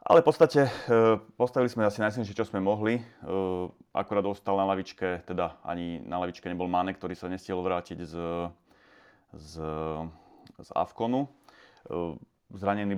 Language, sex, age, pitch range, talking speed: Slovak, male, 30-49, 85-100 Hz, 135 wpm